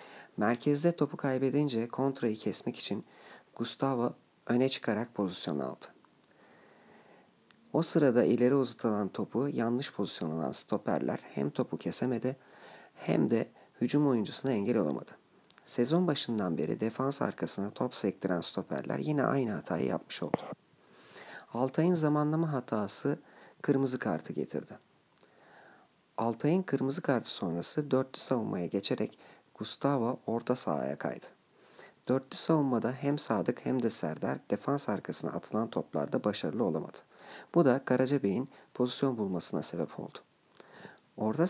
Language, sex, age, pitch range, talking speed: Turkish, male, 40-59, 115-140 Hz, 115 wpm